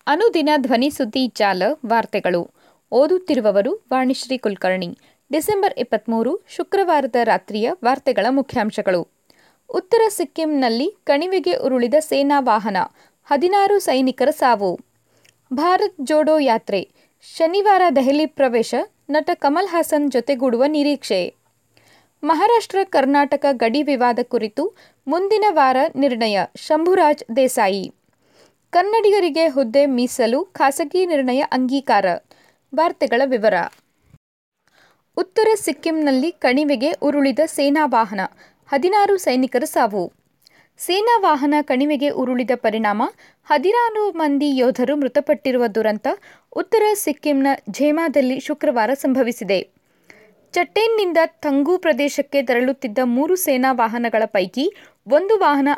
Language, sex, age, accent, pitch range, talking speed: Kannada, female, 20-39, native, 250-325 Hz, 95 wpm